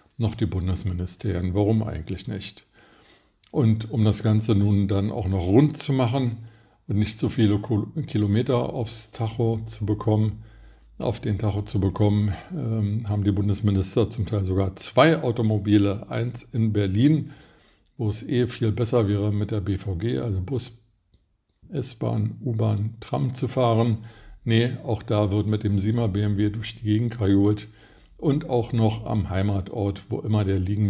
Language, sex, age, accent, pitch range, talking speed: German, male, 50-69, German, 100-115 Hz, 155 wpm